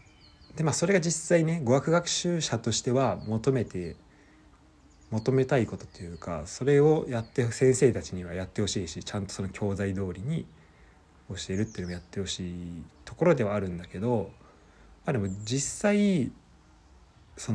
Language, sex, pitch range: Japanese, male, 90-130 Hz